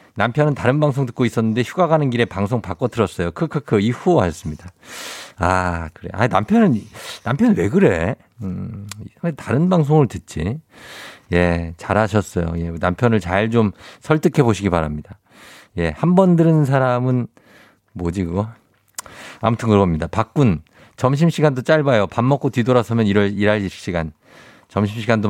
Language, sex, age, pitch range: Korean, male, 50-69, 100-150 Hz